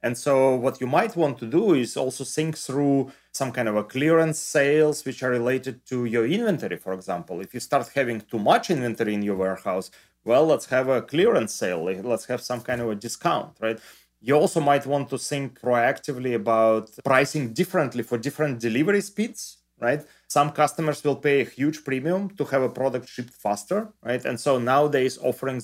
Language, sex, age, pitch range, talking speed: English, male, 30-49, 120-145 Hz, 195 wpm